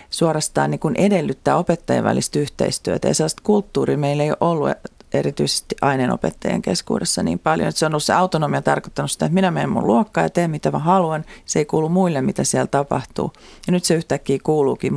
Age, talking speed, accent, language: 40-59, 195 wpm, native, Finnish